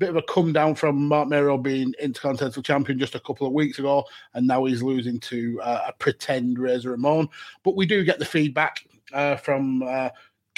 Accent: British